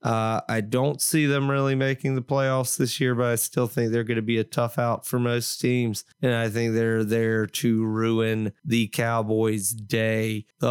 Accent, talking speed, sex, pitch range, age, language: American, 200 wpm, male, 115-135 Hz, 30-49, English